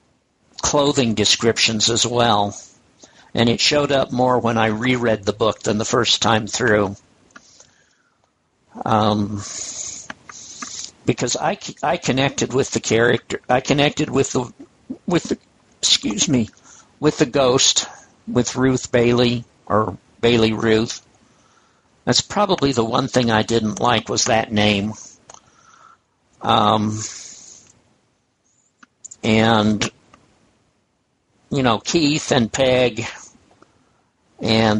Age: 60-79